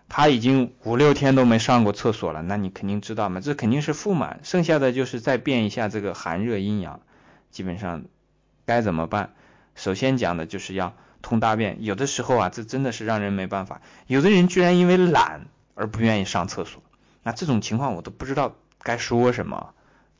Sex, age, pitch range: male, 20-39, 100-135 Hz